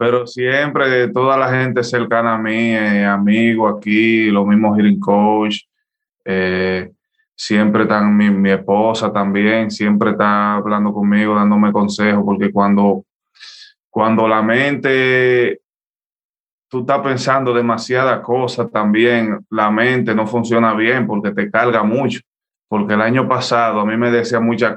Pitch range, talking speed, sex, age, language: 105-125 Hz, 140 wpm, male, 20-39, English